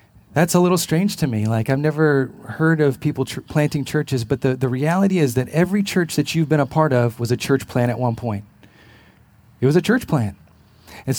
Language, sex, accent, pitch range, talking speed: English, male, American, 125-155 Hz, 220 wpm